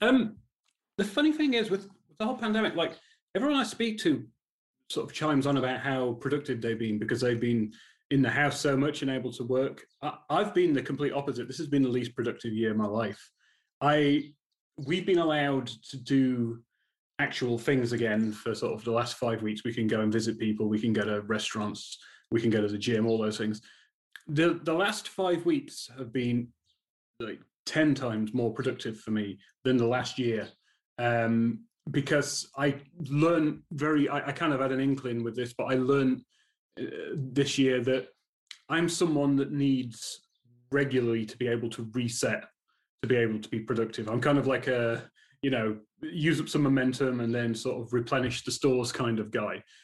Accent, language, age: British, English, 30-49